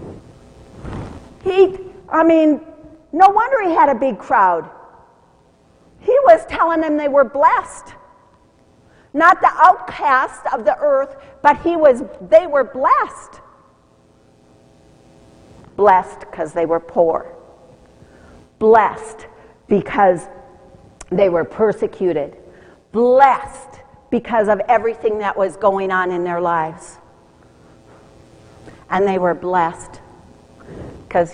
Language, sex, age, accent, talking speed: English, female, 50-69, American, 105 wpm